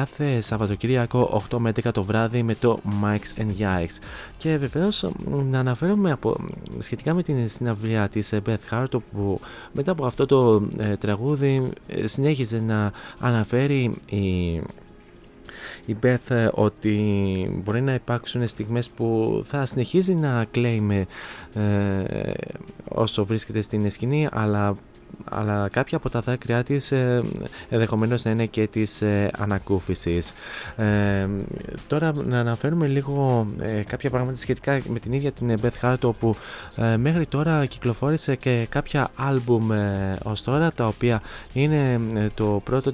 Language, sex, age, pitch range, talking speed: Greek, male, 20-39, 105-135 Hz, 135 wpm